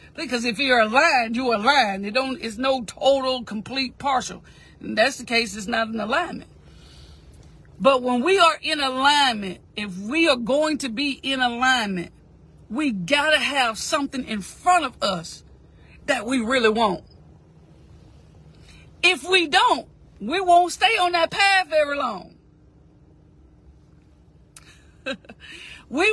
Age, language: 50-69, English